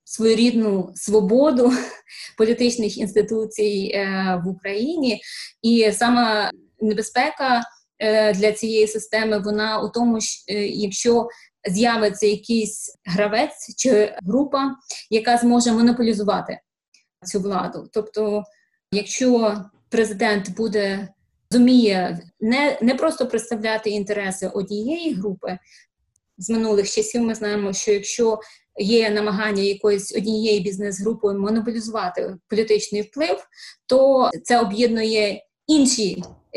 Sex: female